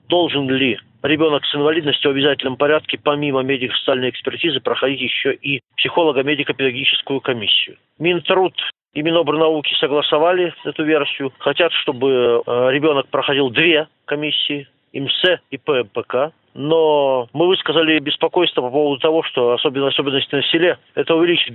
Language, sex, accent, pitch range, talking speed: Russian, male, native, 135-160 Hz, 130 wpm